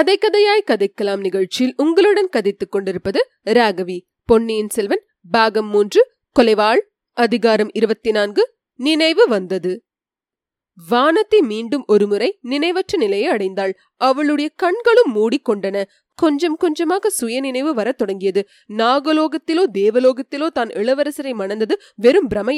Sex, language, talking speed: female, Tamil, 110 wpm